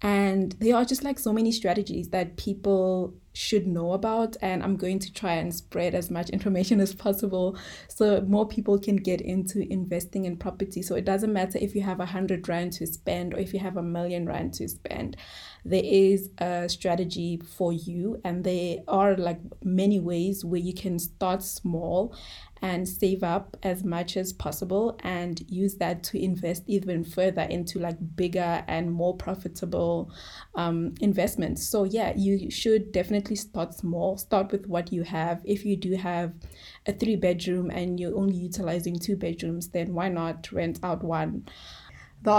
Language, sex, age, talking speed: English, female, 20-39, 180 wpm